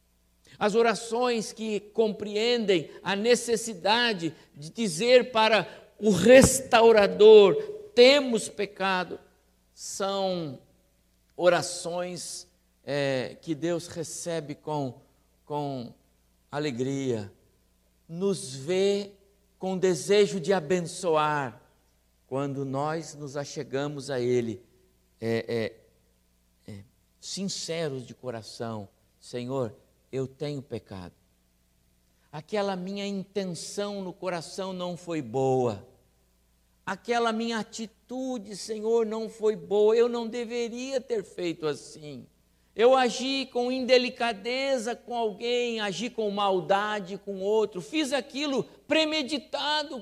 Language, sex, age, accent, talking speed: Portuguese, male, 60-79, Brazilian, 90 wpm